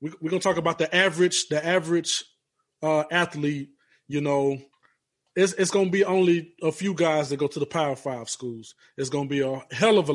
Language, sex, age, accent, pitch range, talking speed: English, male, 20-39, American, 145-175 Hz, 220 wpm